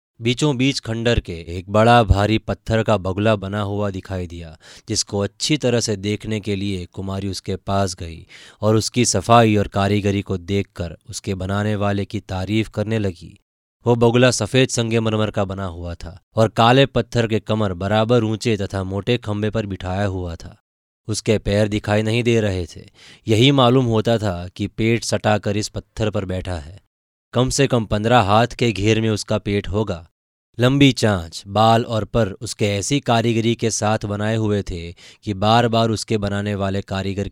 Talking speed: 180 wpm